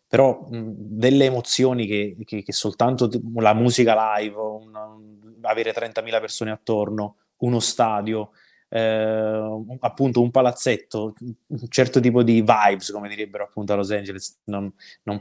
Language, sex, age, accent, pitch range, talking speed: Italian, male, 20-39, native, 100-115 Hz, 140 wpm